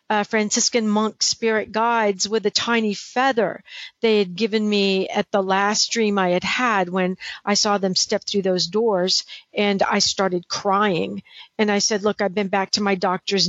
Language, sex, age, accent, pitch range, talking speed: English, female, 50-69, American, 195-225 Hz, 185 wpm